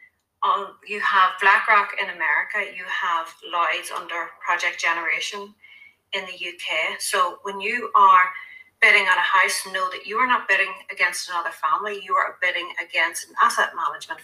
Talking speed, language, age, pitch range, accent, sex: 160 wpm, English, 30-49, 185-250 Hz, Irish, female